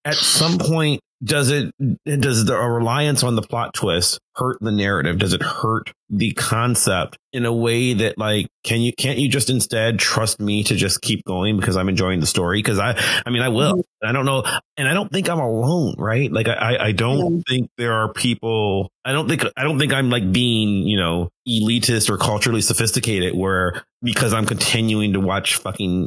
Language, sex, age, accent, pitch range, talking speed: English, male, 30-49, American, 105-135 Hz, 205 wpm